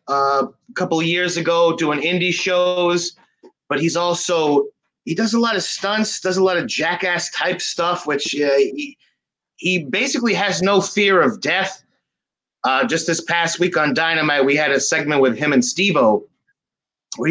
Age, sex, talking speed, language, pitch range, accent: 30-49, male, 175 wpm, English, 130-175 Hz, American